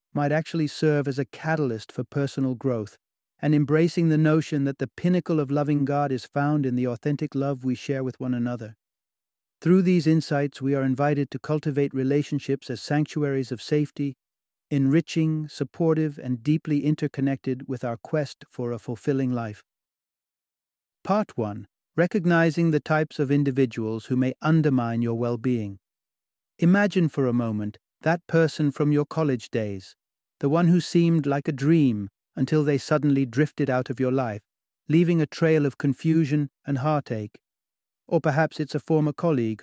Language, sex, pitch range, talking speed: English, male, 125-155 Hz, 160 wpm